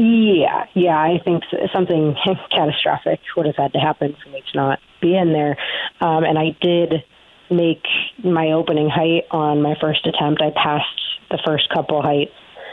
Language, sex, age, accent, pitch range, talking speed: English, female, 30-49, American, 140-160 Hz, 170 wpm